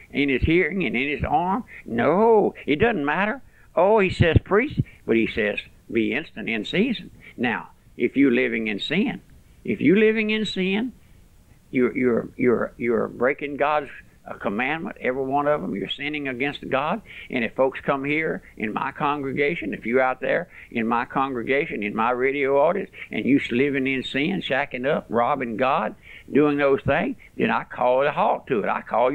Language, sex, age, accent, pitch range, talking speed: English, male, 60-79, American, 130-175 Hz, 180 wpm